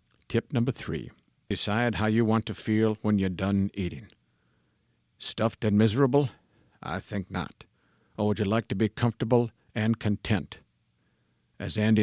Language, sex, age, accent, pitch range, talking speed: English, male, 50-69, American, 95-115 Hz, 150 wpm